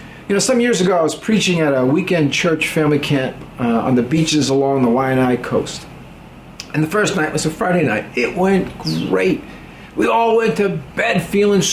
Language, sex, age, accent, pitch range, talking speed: English, male, 40-59, American, 145-215 Hz, 200 wpm